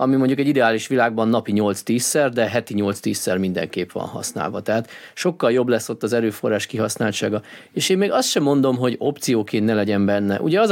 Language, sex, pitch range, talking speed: Hungarian, male, 115-150 Hz, 190 wpm